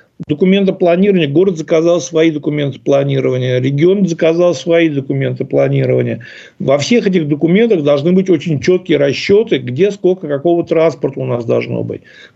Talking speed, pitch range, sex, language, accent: 140 wpm, 155-200 Hz, male, Russian, native